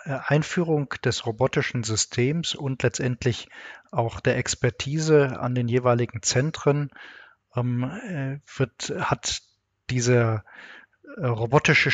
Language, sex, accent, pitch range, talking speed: German, male, German, 120-135 Hz, 90 wpm